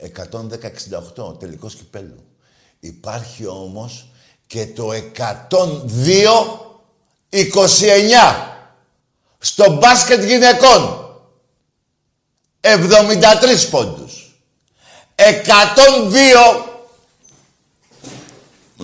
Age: 60-79